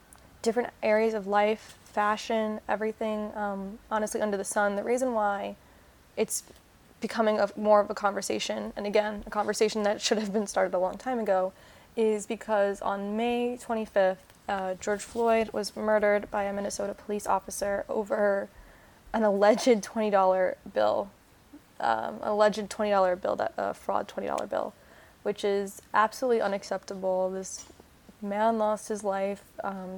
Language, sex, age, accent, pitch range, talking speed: English, female, 20-39, American, 200-225 Hz, 140 wpm